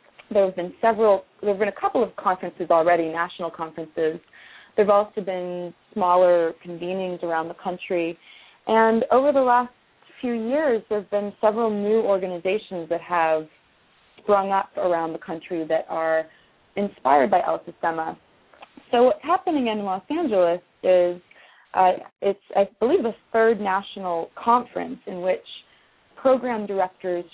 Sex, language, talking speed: female, English, 145 wpm